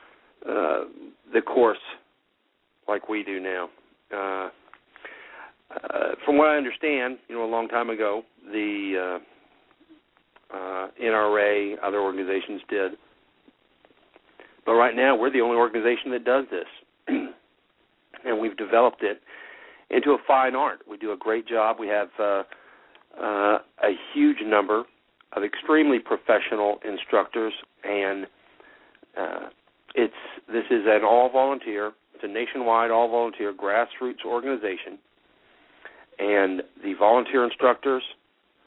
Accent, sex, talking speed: American, male, 120 wpm